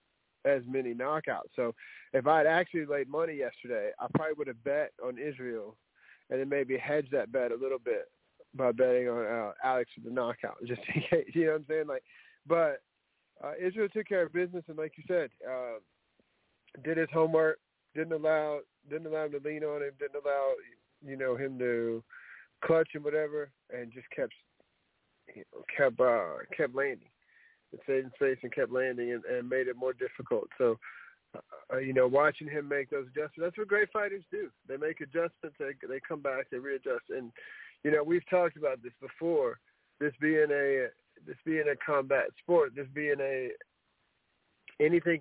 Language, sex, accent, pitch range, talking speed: English, male, American, 135-170 Hz, 180 wpm